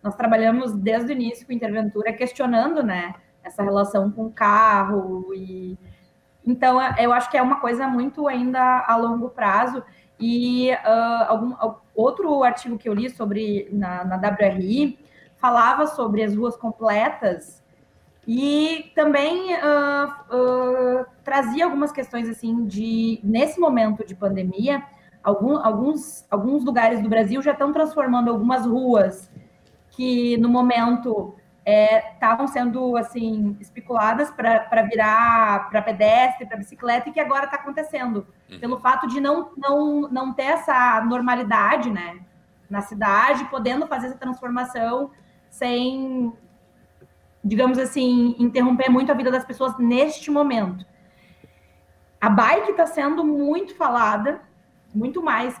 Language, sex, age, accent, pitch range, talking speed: Portuguese, female, 20-39, Brazilian, 220-270 Hz, 130 wpm